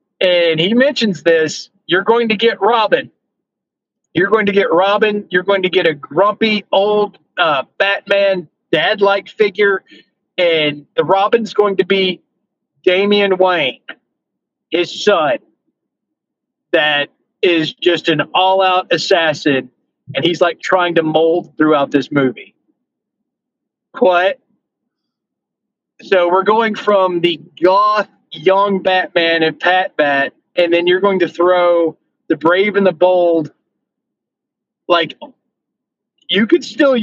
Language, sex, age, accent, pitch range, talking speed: English, male, 40-59, American, 165-205 Hz, 125 wpm